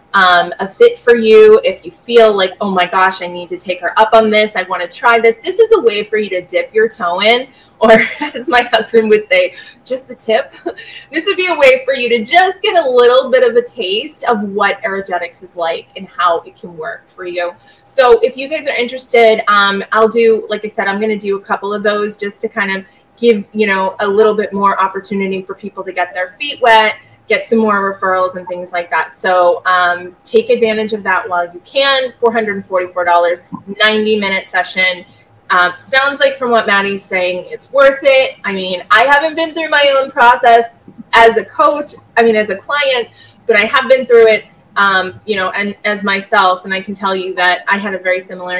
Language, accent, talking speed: English, American, 225 wpm